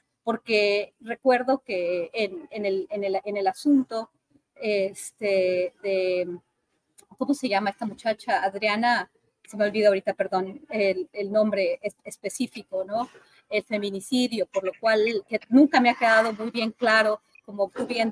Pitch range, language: 200-255 Hz, Spanish